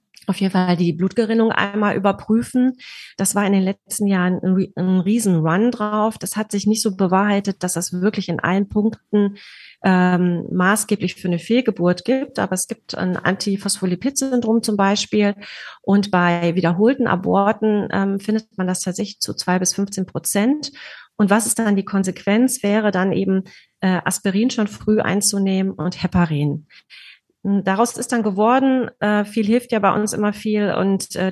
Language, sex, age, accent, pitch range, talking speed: German, female, 30-49, German, 175-210 Hz, 165 wpm